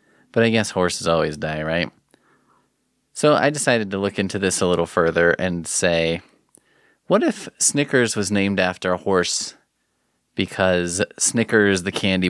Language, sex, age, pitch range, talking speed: English, male, 30-49, 90-115 Hz, 150 wpm